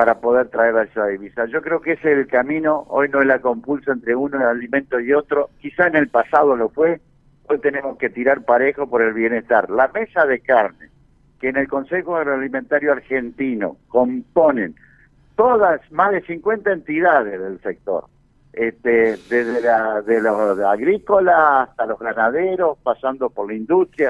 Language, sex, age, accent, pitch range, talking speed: Spanish, male, 60-79, Argentinian, 125-155 Hz, 175 wpm